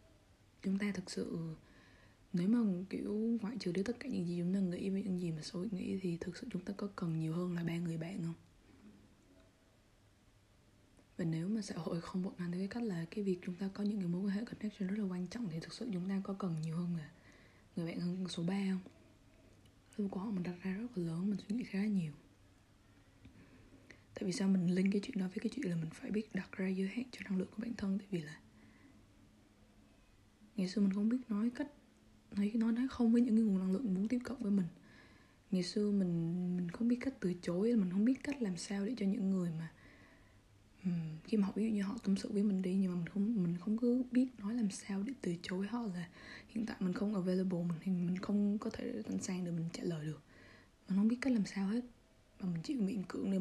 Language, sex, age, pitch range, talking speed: Vietnamese, female, 20-39, 165-210 Hz, 245 wpm